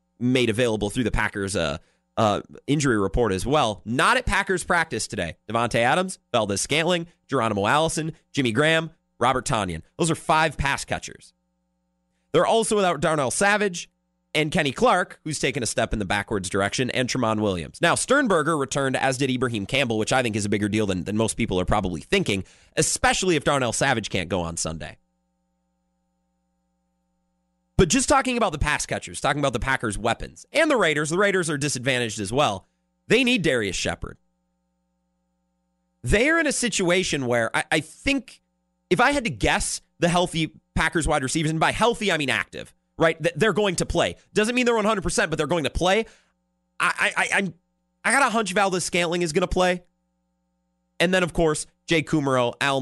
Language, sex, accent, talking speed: English, male, American, 185 wpm